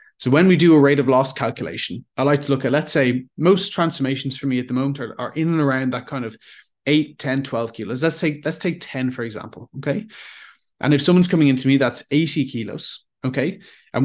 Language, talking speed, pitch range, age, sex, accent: English, 230 wpm, 125-150 Hz, 20-39, male, Irish